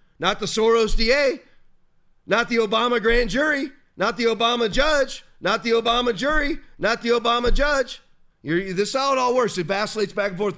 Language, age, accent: English, 30-49, American